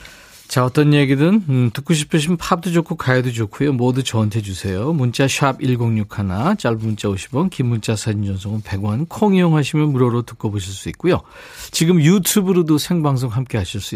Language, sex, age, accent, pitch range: Korean, male, 40-59, native, 115-165 Hz